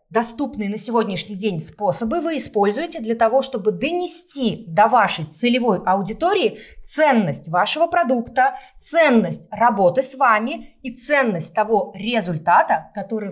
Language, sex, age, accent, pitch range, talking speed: Russian, female, 20-39, native, 190-255 Hz, 120 wpm